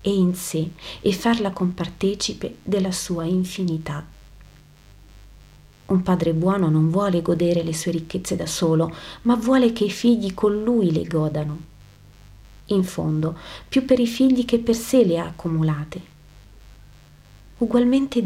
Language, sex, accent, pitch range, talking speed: Italian, female, native, 160-205 Hz, 140 wpm